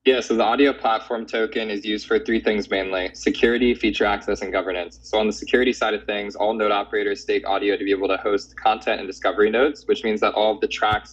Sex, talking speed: male, 245 wpm